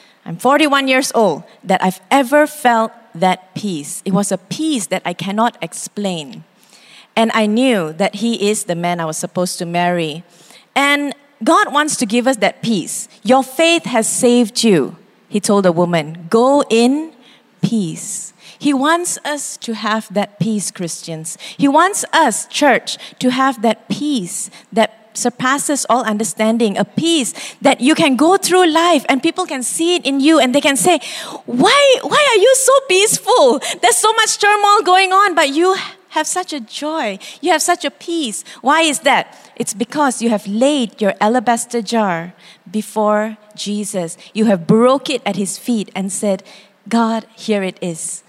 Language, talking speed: English, 175 wpm